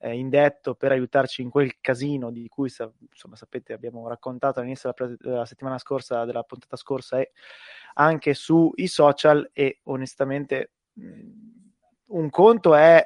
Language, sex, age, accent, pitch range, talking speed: Italian, male, 20-39, native, 130-150 Hz, 135 wpm